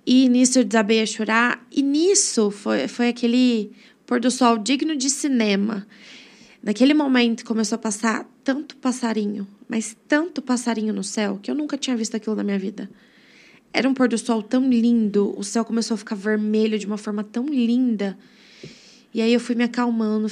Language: Portuguese